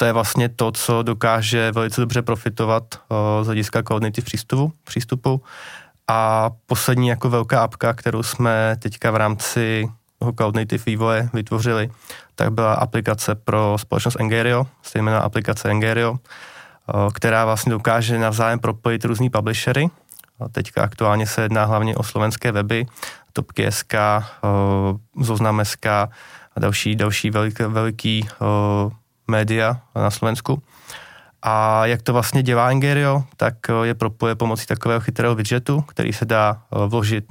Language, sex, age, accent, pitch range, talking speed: Czech, male, 20-39, native, 110-120 Hz, 135 wpm